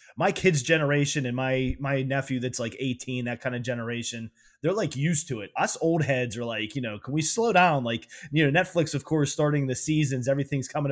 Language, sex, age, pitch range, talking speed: English, male, 20-39, 125-165 Hz, 225 wpm